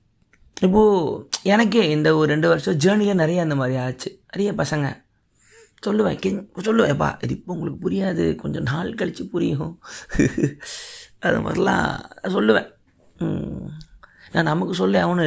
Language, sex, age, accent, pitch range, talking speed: Tamil, male, 30-49, native, 125-200 Hz, 120 wpm